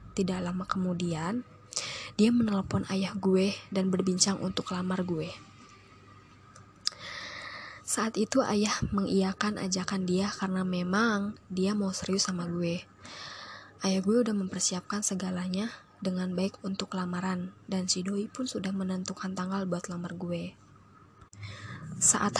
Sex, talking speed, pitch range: female, 120 wpm, 180-205 Hz